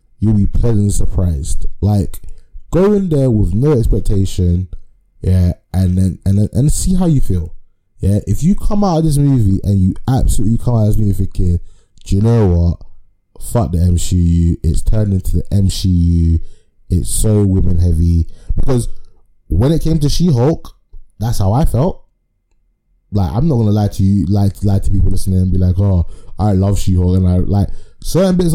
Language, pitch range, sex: English, 90-110 Hz, male